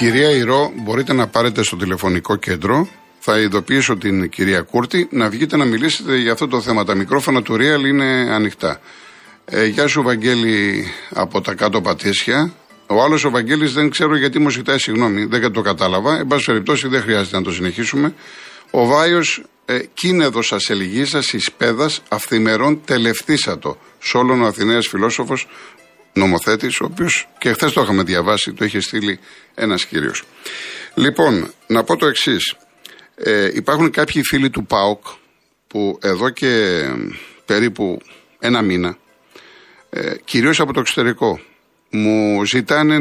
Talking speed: 150 wpm